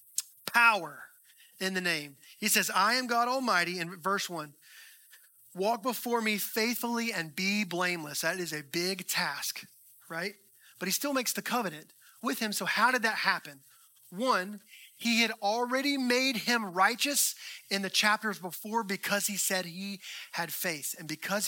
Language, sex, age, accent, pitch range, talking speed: English, male, 30-49, American, 175-235 Hz, 160 wpm